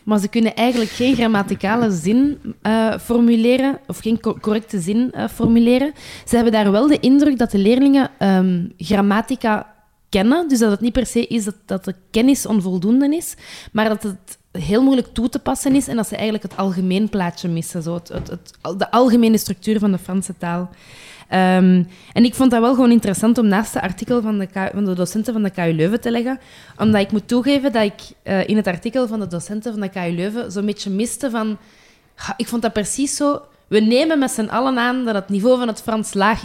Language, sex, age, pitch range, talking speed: Dutch, female, 20-39, 195-245 Hz, 200 wpm